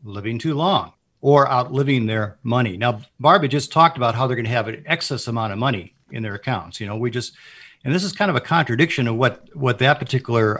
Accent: American